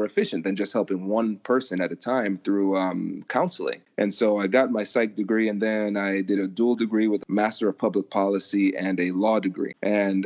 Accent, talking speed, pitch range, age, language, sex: American, 215 wpm, 100-115 Hz, 30-49, English, male